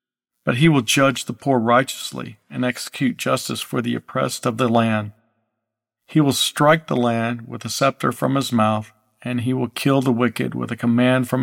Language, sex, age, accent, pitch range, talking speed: English, male, 50-69, American, 115-135 Hz, 195 wpm